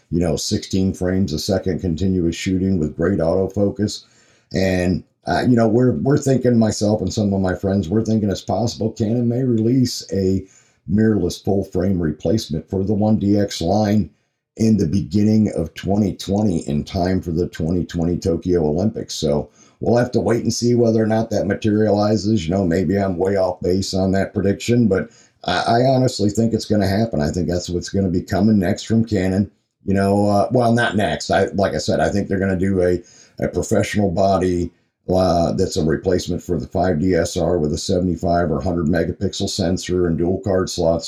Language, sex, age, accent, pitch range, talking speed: English, male, 50-69, American, 85-110 Hz, 195 wpm